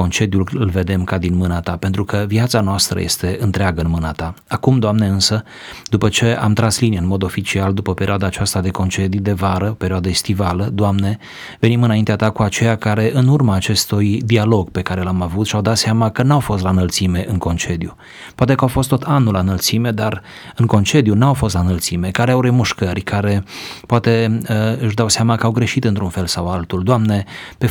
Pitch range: 95-115 Hz